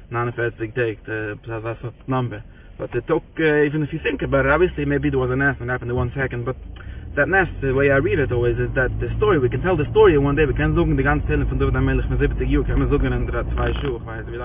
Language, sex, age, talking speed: English, male, 20-39, 305 wpm